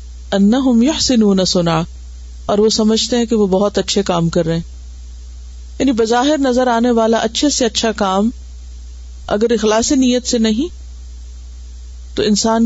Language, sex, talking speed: Urdu, female, 145 wpm